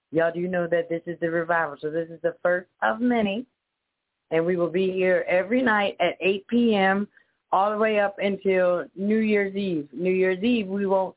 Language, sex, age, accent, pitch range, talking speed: English, female, 30-49, American, 165-205 Hz, 210 wpm